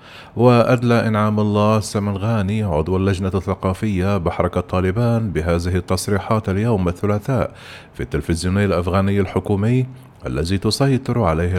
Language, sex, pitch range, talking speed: Arabic, male, 95-115 Hz, 105 wpm